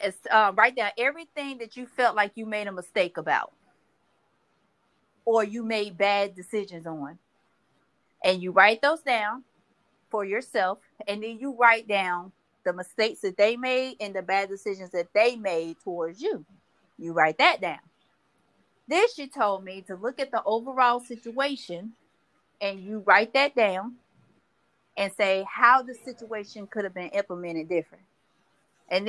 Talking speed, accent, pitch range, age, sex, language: 155 wpm, American, 190-240 Hz, 30-49, female, English